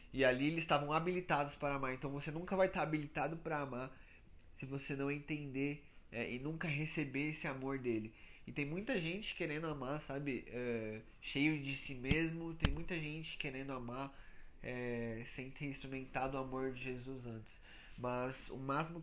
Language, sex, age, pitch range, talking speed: Portuguese, male, 20-39, 115-140 Hz, 175 wpm